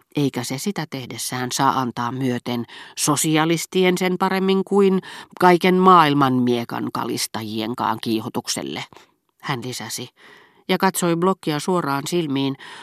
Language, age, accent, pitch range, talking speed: Finnish, 40-59, native, 125-175 Hz, 110 wpm